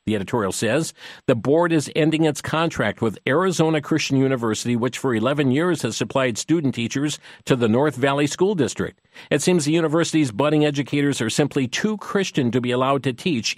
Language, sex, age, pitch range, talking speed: English, male, 50-69, 120-160 Hz, 185 wpm